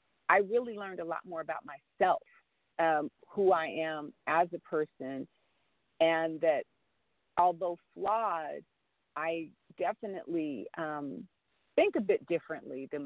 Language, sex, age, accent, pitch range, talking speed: English, female, 40-59, American, 160-215 Hz, 125 wpm